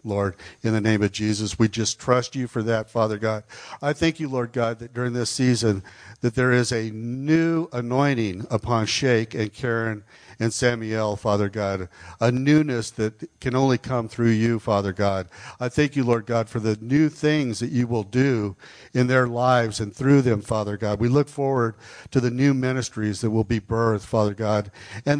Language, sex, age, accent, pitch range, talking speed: English, male, 60-79, American, 105-125 Hz, 195 wpm